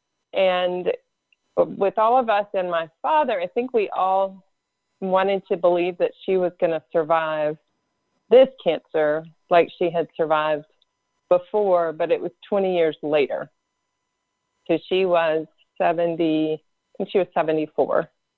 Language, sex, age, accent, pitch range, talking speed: English, female, 40-59, American, 165-195 Hz, 140 wpm